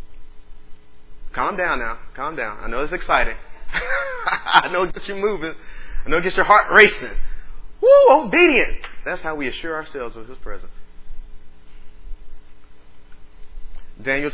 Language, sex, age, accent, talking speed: English, male, 30-49, American, 140 wpm